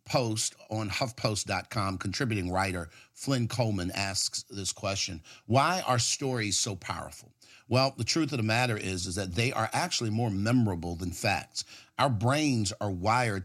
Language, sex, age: English, male, 50-69